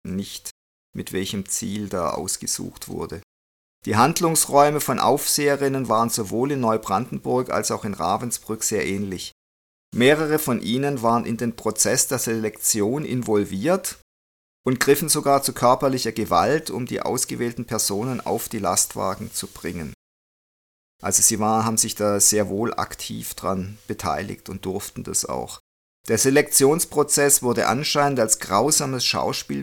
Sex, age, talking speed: male, 50-69, 135 wpm